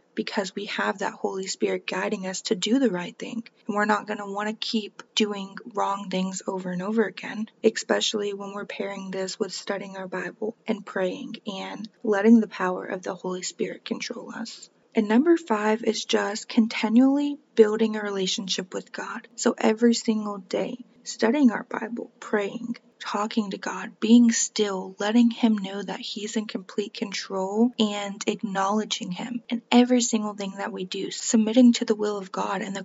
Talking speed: 180 wpm